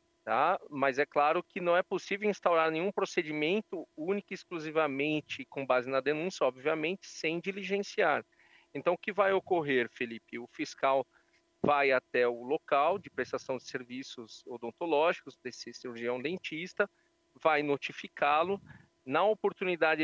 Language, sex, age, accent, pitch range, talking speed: Portuguese, male, 40-59, Brazilian, 145-190 Hz, 135 wpm